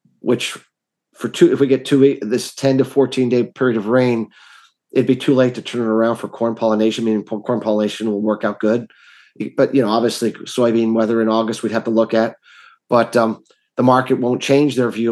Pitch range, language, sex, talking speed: 115-130 Hz, English, male, 215 wpm